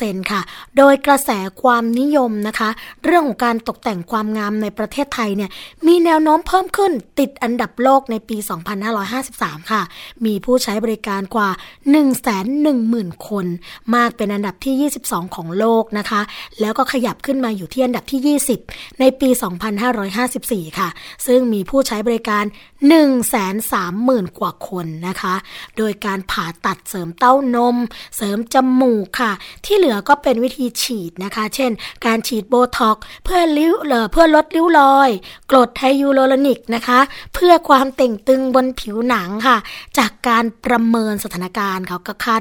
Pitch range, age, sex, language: 215-270 Hz, 20-39, female, Thai